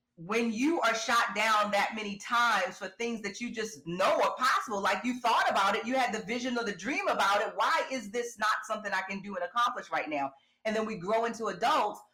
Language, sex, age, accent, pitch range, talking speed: English, female, 30-49, American, 200-260 Hz, 235 wpm